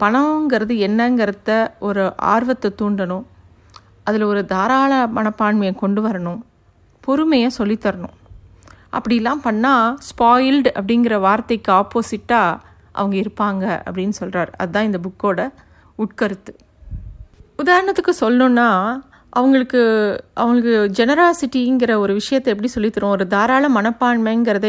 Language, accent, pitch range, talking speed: Tamil, native, 205-260 Hz, 95 wpm